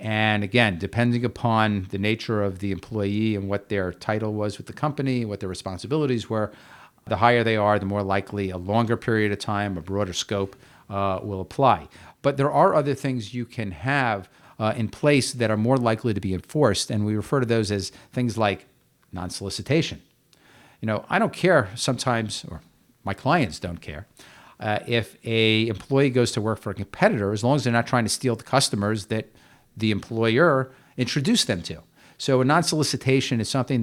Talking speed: 190 wpm